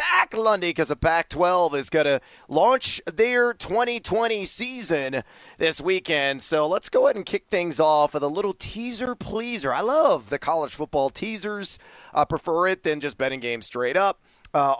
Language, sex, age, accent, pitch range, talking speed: English, male, 30-49, American, 140-180 Hz, 180 wpm